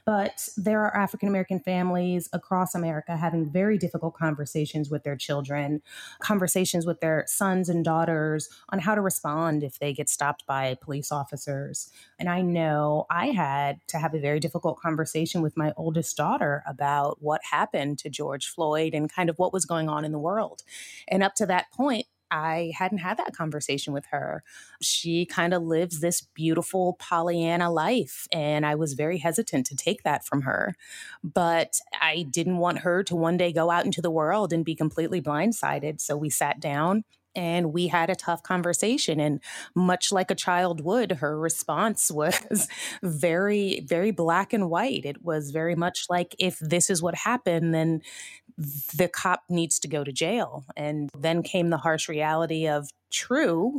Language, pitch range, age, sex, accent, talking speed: English, 155-185 Hz, 30-49, female, American, 175 wpm